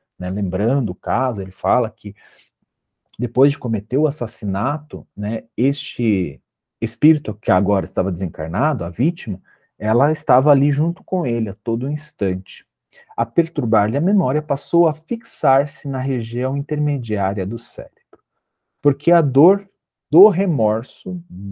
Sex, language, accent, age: male, Portuguese, Brazilian, 40-59